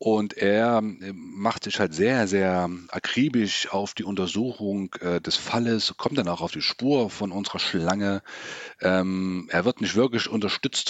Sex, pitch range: male, 85-100 Hz